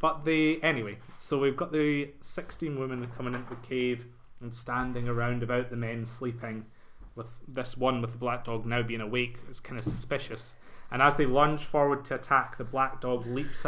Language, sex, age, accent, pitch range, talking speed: English, male, 20-39, British, 120-145 Hz, 200 wpm